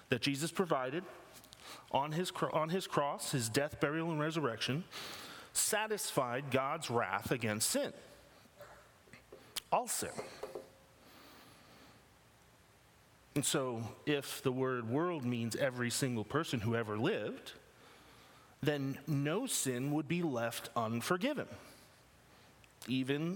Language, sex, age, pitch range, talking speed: English, male, 30-49, 125-170 Hz, 110 wpm